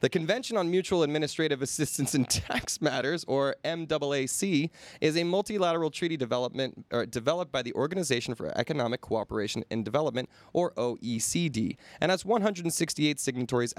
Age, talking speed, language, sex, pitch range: 20-39, 140 wpm, English, male, 115-160 Hz